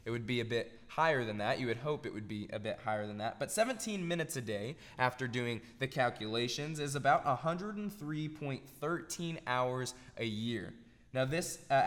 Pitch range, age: 115-145 Hz, 20-39